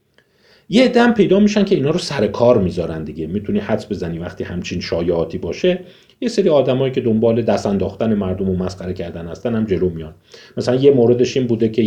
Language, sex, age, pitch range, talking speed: Persian, male, 40-59, 95-125 Hz, 190 wpm